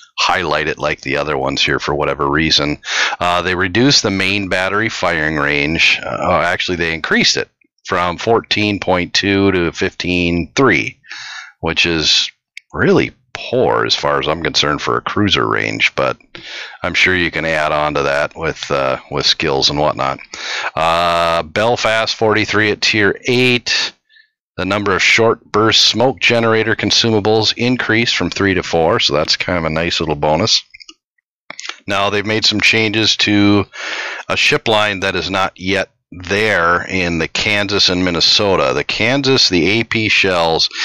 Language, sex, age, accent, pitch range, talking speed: English, male, 40-59, American, 85-110 Hz, 155 wpm